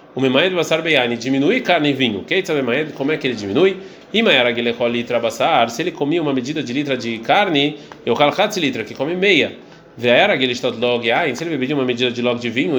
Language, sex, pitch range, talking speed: Portuguese, male, 120-155 Hz, 225 wpm